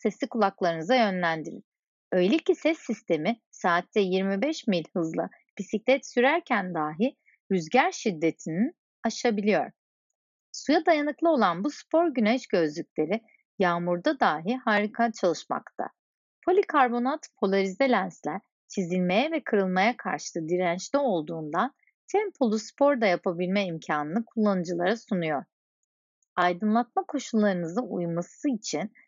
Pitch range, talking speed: 175-260 Hz, 100 wpm